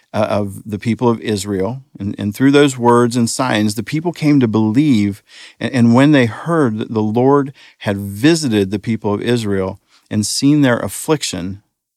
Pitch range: 100-125 Hz